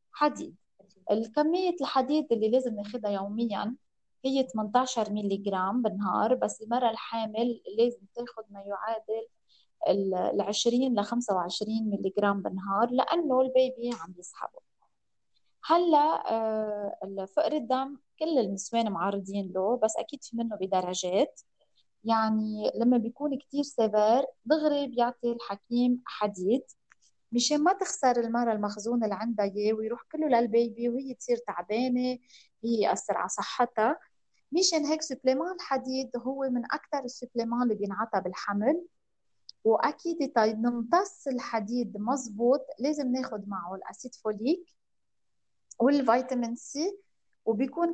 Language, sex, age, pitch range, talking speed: Arabic, female, 20-39, 215-270 Hz, 110 wpm